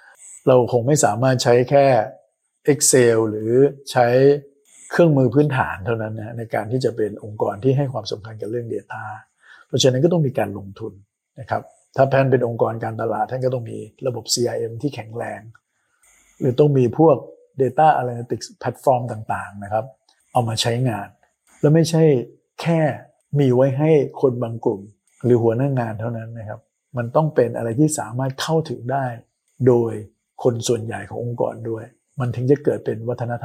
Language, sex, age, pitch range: Thai, male, 60-79, 115-135 Hz